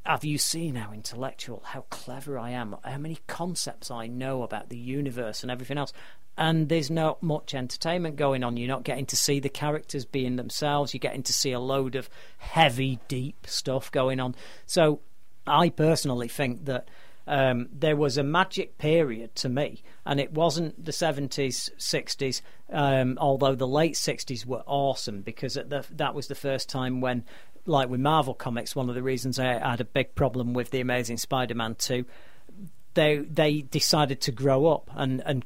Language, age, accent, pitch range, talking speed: English, 40-59, British, 125-150 Hz, 180 wpm